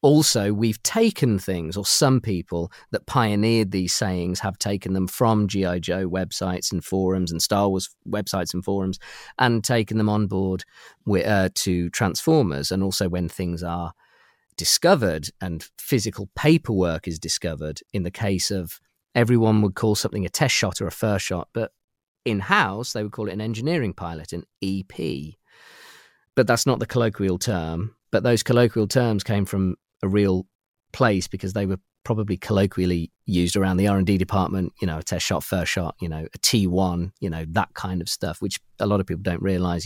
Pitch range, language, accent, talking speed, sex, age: 90-115 Hz, English, British, 185 wpm, male, 40-59